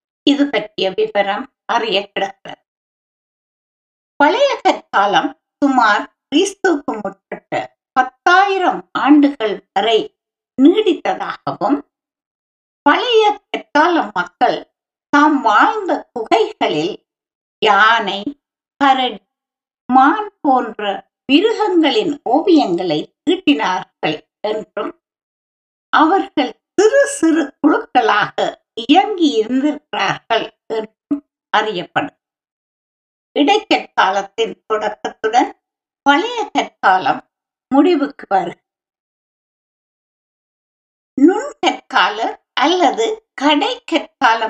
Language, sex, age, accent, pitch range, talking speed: Tamil, female, 50-69, native, 235-350 Hz, 40 wpm